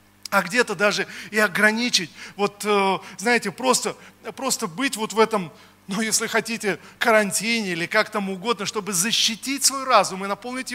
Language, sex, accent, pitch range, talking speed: Russian, male, native, 200-235 Hz, 150 wpm